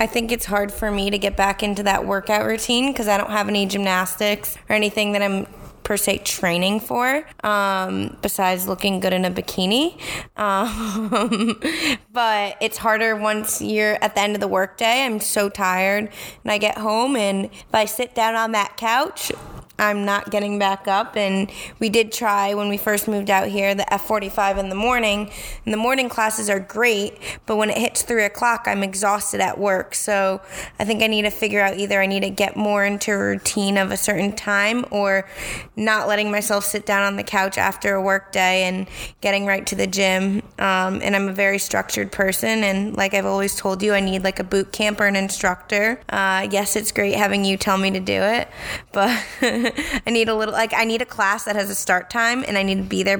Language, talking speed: English, 215 wpm